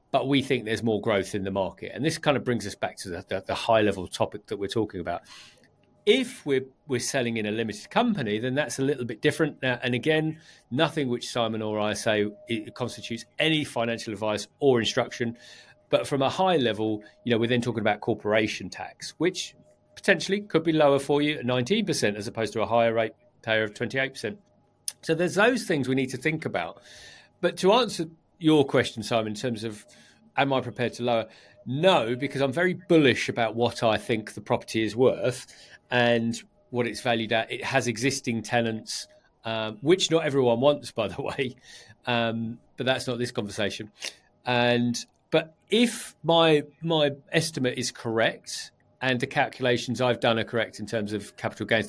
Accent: British